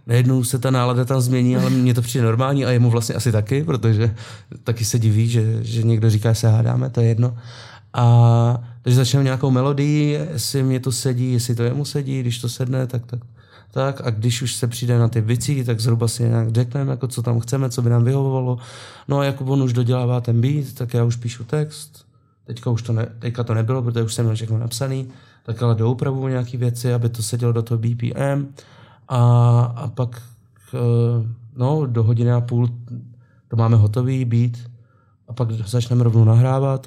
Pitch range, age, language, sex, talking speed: 115-125 Hz, 30-49, Czech, male, 200 wpm